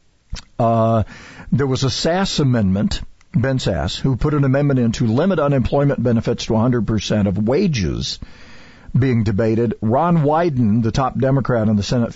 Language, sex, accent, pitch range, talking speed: English, male, American, 115-145 Hz, 155 wpm